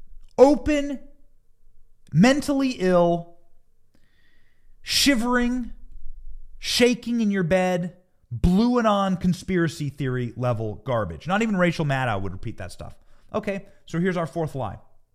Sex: male